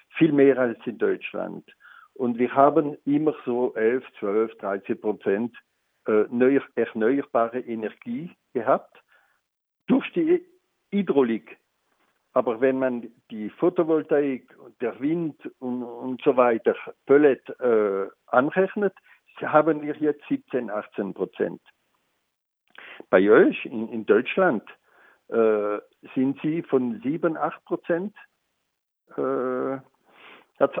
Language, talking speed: German, 110 wpm